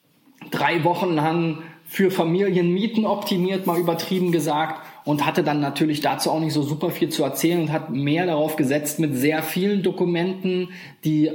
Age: 20-39